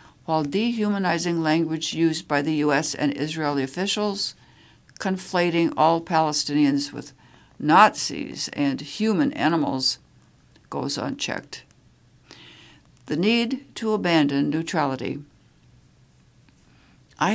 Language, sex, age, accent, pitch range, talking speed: English, female, 60-79, American, 145-180 Hz, 90 wpm